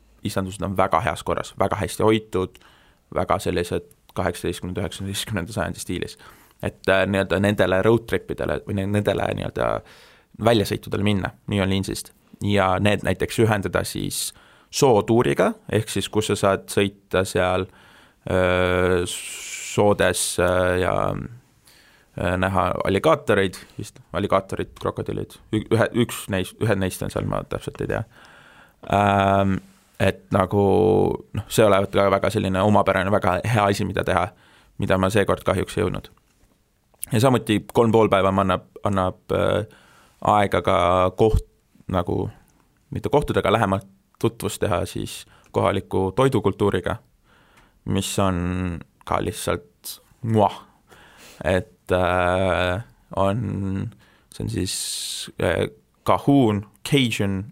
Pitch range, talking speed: 95-105 Hz, 115 wpm